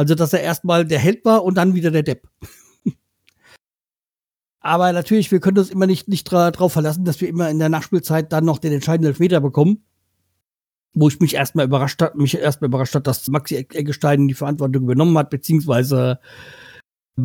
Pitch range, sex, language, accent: 145-175 Hz, male, German, German